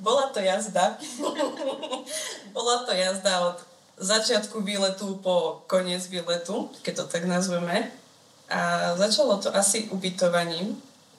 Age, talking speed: 20-39, 115 wpm